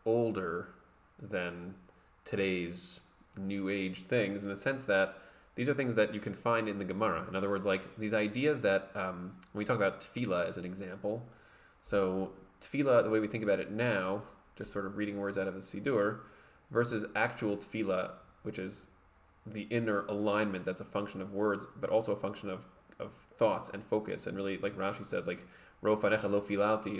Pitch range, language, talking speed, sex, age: 100-110 Hz, English, 185 wpm, male, 20-39